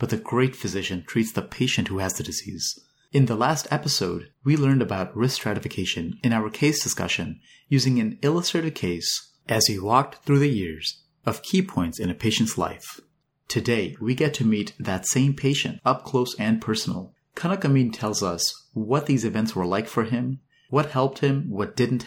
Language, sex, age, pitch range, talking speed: English, male, 30-49, 105-135 Hz, 190 wpm